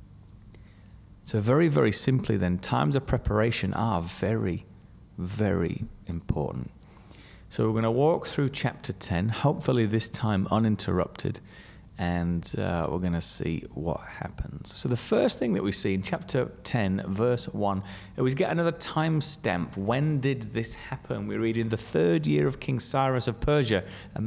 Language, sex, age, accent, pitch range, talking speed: English, male, 30-49, British, 95-125 Hz, 160 wpm